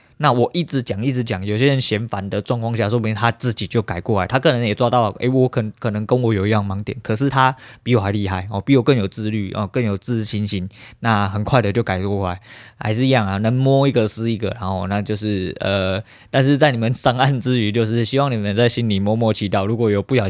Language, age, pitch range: Chinese, 20-39, 105-130 Hz